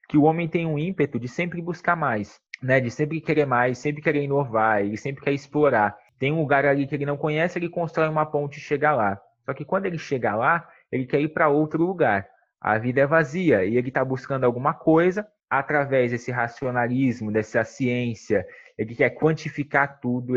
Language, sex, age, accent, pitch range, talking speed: Portuguese, male, 20-39, Brazilian, 130-165 Hz, 200 wpm